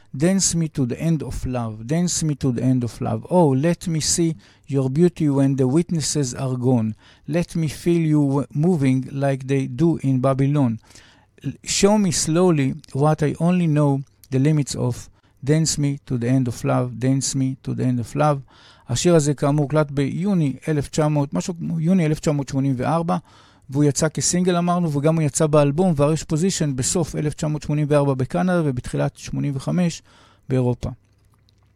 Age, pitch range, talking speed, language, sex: 50-69, 130-165 Hz, 160 wpm, Hebrew, male